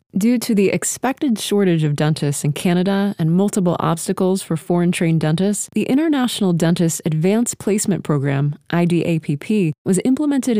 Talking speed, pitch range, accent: 135 wpm, 165-210 Hz, American